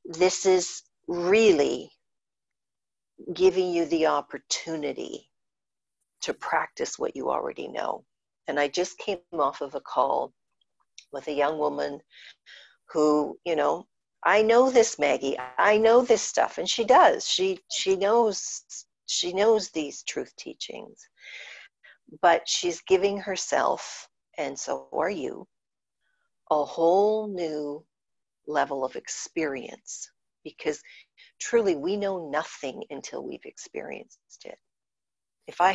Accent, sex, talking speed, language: American, female, 120 wpm, English